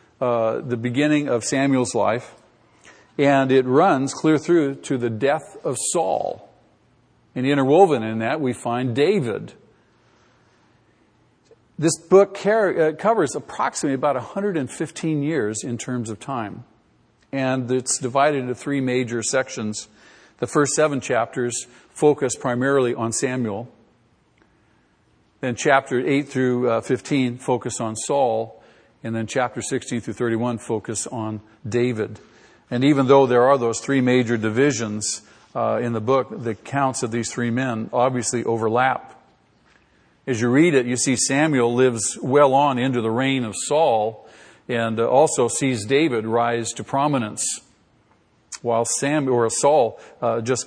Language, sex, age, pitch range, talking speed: English, male, 50-69, 115-135 Hz, 140 wpm